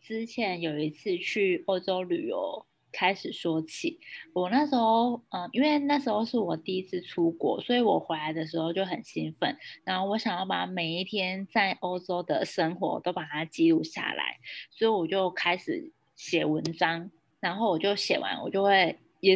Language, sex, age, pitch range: Chinese, female, 20-39, 170-225 Hz